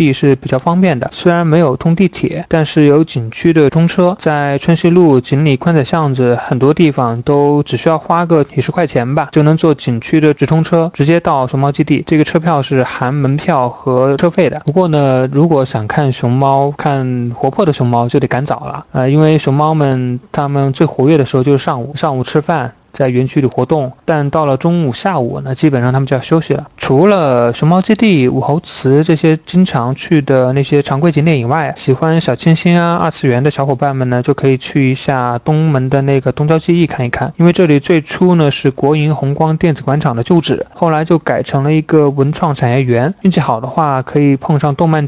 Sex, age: male, 20-39